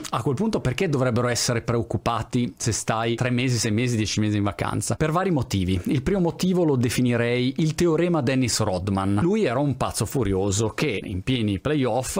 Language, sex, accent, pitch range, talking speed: Italian, male, native, 115-160 Hz, 185 wpm